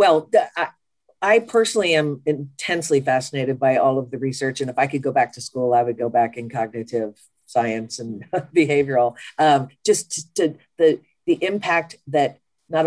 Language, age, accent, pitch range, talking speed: English, 50-69, American, 120-150 Hz, 175 wpm